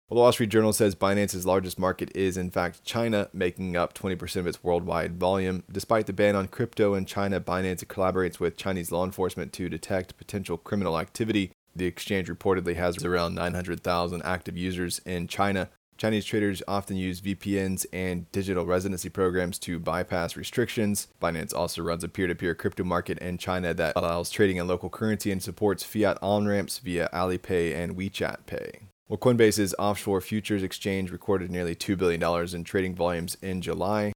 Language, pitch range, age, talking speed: English, 90-100 Hz, 20-39, 170 wpm